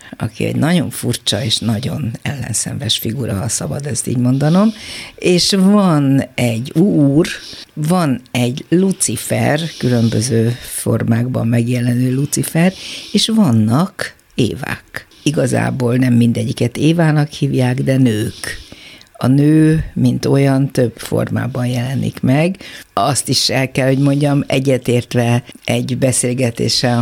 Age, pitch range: 50-69, 120-145 Hz